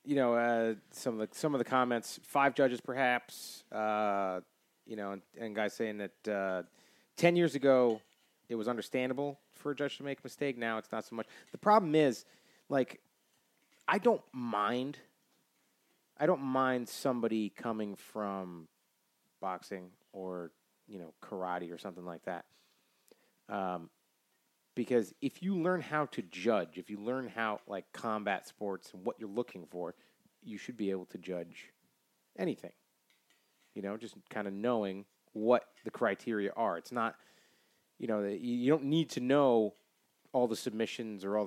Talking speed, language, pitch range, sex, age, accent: 165 wpm, English, 100-130 Hz, male, 30-49, American